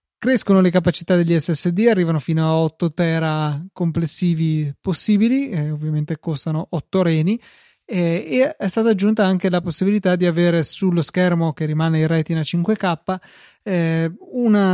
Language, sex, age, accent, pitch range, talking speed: Italian, male, 20-39, native, 160-190 Hz, 145 wpm